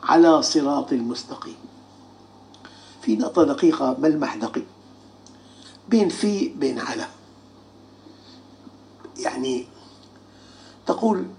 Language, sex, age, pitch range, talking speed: Arabic, male, 60-79, 205-325 Hz, 75 wpm